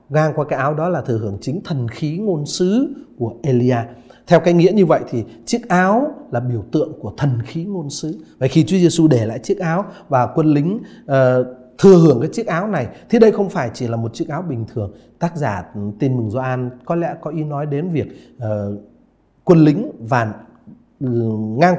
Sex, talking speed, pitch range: male, 215 wpm, 125-175 Hz